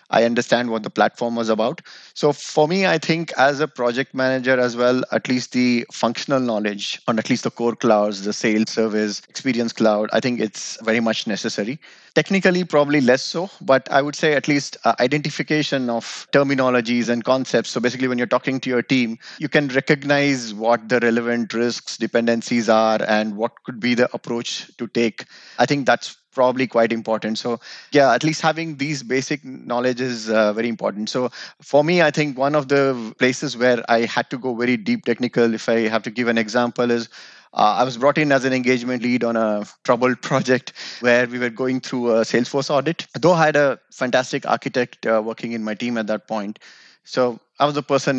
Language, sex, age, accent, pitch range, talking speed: English, male, 30-49, Indian, 115-135 Hz, 205 wpm